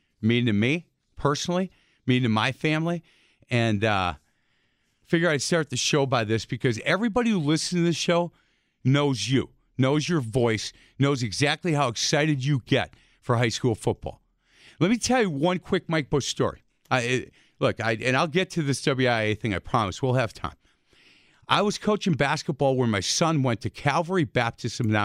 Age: 50-69